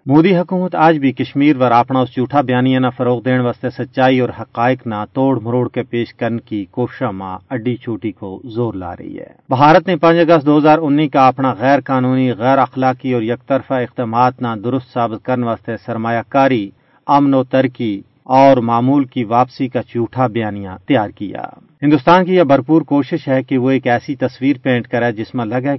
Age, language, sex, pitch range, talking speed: 40-59, Urdu, male, 115-140 Hz, 195 wpm